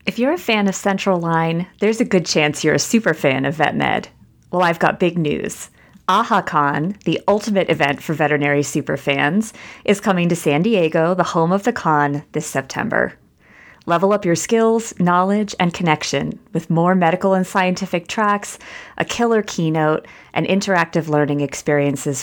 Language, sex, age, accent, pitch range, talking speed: English, female, 30-49, American, 150-195 Hz, 170 wpm